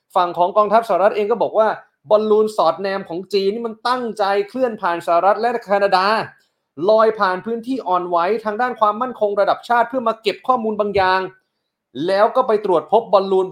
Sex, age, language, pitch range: male, 30-49, Thai, 150-200 Hz